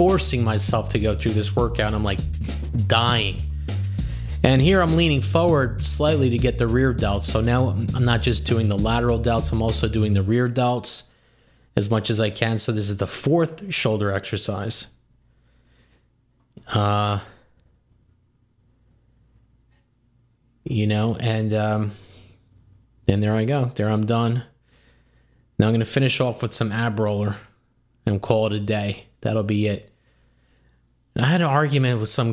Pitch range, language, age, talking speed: 105-120 Hz, English, 20-39, 155 wpm